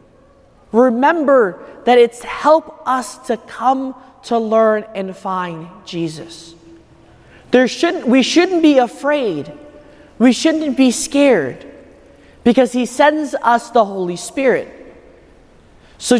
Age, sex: 30-49, male